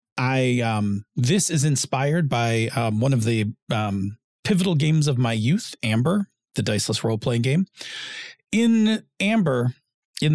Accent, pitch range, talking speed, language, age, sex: American, 115-155 Hz, 140 wpm, English, 40-59, male